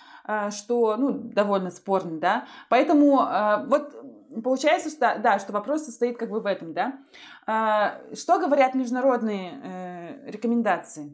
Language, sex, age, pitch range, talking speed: Russian, female, 20-39, 210-270 Hz, 115 wpm